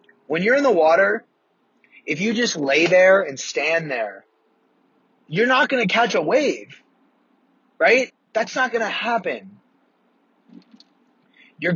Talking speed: 140 wpm